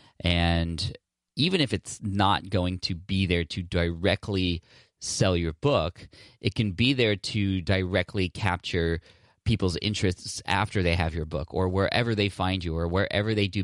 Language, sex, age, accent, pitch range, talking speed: English, male, 30-49, American, 90-105 Hz, 165 wpm